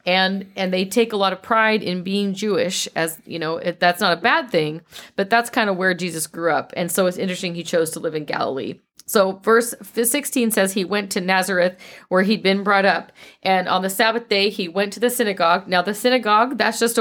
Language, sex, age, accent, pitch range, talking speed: English, female, 40-59, American, 175-215 Hz, 230 wpm